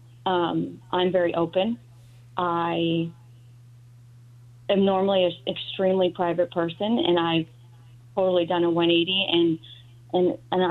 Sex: female